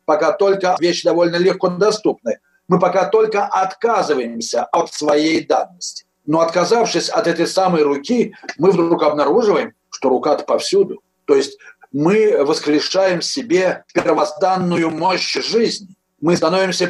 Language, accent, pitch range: Russian, native, 155-215 Hz